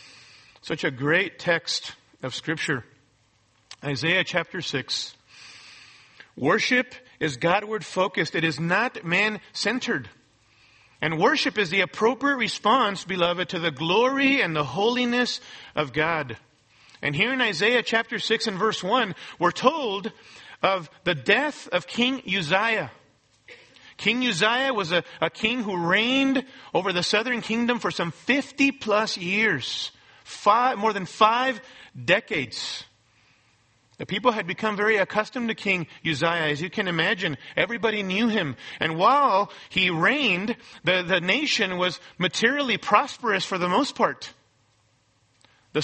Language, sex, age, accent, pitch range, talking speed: English, male, 40-59, American, 165-225 Hz, 130 wpm